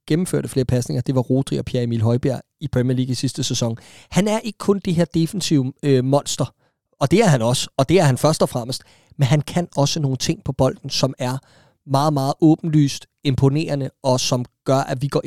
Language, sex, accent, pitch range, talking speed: Danish, male, native, 130-155 Hz, 225 wpm